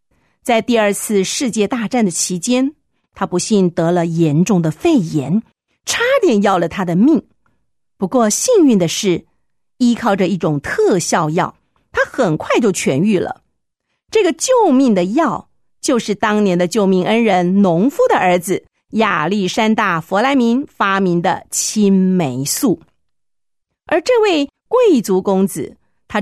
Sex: female